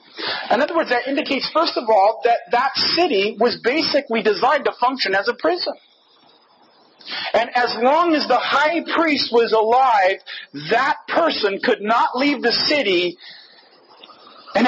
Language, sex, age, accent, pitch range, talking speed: English, male, 40-59, American, 205-290 Hz, 145 wpm